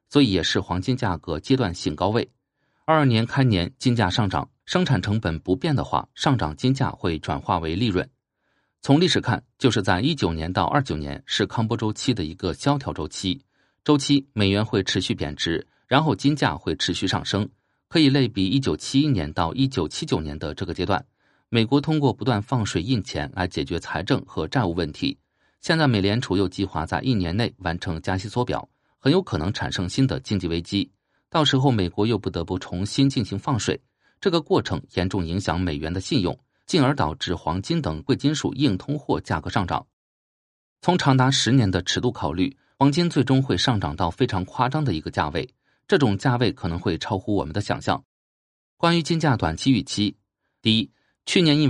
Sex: male